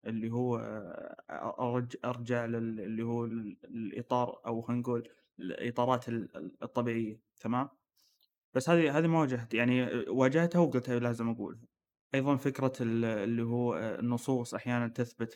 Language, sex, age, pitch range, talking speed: Arabic, male, 20-39, 115-130 Hz, 105 wpm